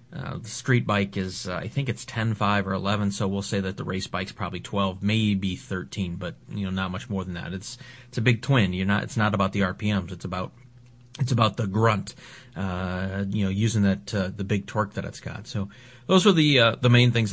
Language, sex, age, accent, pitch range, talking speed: English, male, 30-49, American, 100-125 Hz, 240 wpm